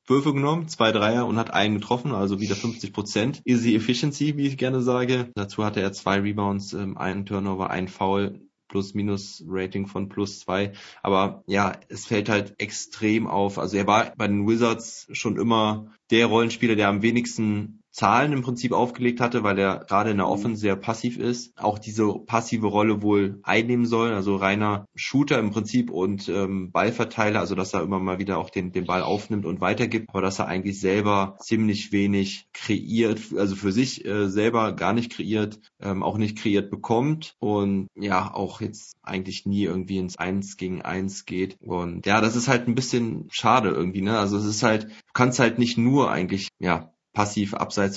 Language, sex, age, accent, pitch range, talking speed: German, male, 20-39, German, 100-115 Hz, 190 wpm